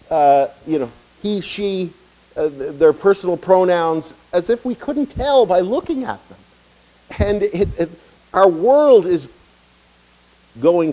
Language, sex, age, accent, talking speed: English, male, 50-69, American, 145 wpm